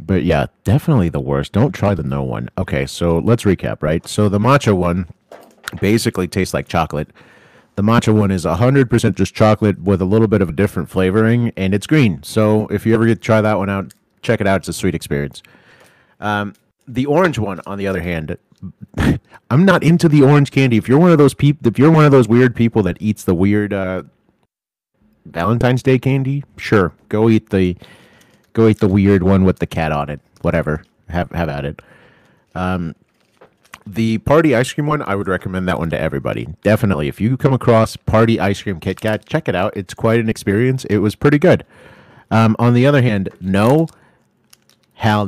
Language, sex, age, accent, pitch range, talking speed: English, male, 30-49, American, 90-115 Hz, 205 wpm